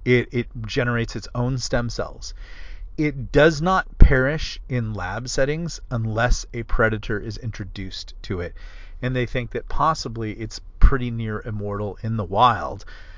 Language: English